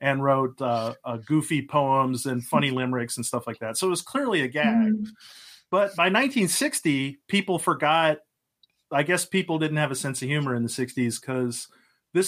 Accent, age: American, 30-49